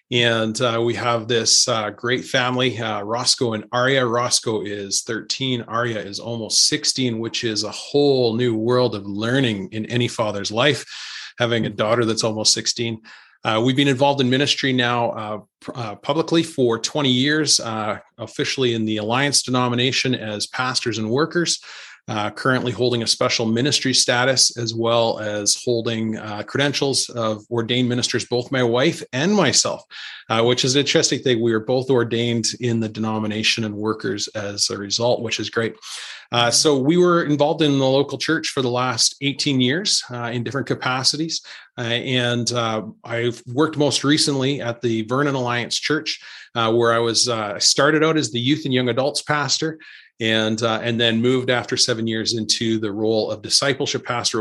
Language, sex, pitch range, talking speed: English, male, 115-135 Hz, 175 wpm